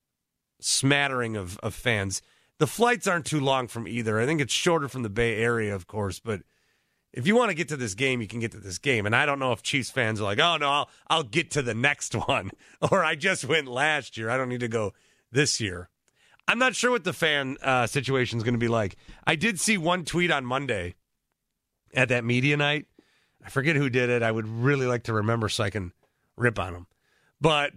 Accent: American